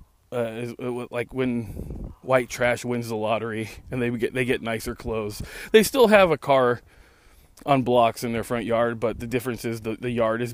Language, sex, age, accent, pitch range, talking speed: English, male, 20-39, American, 115-145 Hz, 195 wpm